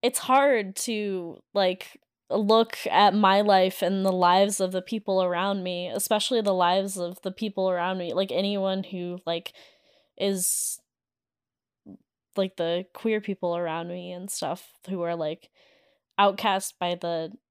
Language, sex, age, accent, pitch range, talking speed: English, female, 10-29, American, 175-205 Hz, 145 wpm